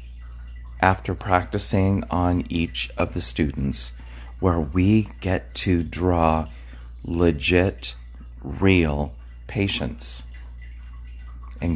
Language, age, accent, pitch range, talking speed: English, 40-59, American, 70-100 Hz, 80 wpm